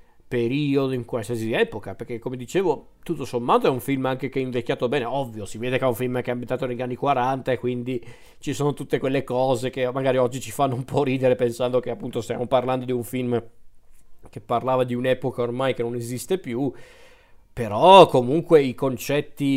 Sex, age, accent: male, 40-59, native